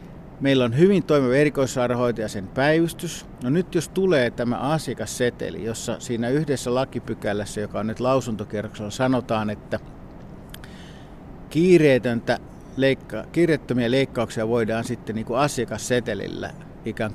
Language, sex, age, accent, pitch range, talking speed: Finnish, male, 50-69, native, 115-150 Hz, 115 wpm